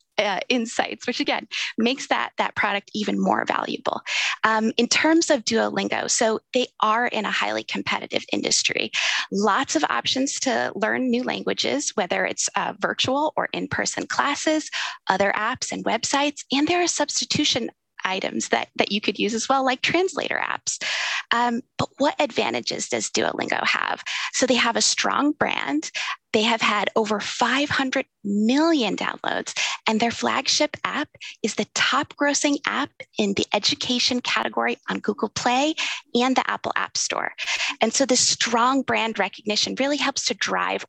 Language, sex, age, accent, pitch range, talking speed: English, female, 20-39, American, 230-285 Hz, 160 wpm